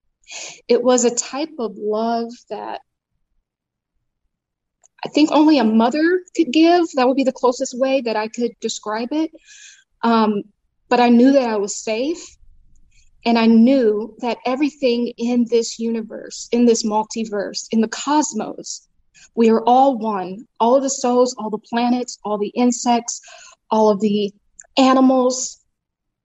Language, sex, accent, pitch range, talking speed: English, female, American, 220-255 Hz, 150 wpm